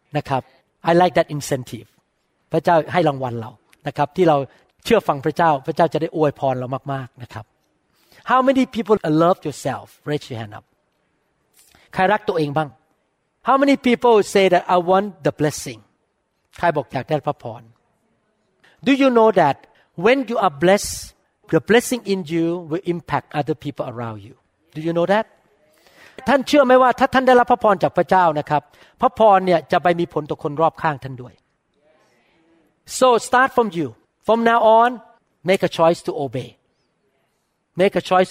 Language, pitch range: Thai, 140-190 Hz